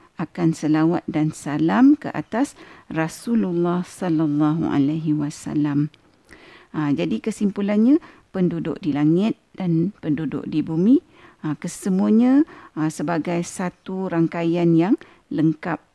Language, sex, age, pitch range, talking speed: Malay, female, 50-69, 155-210 Hz, 100 wpm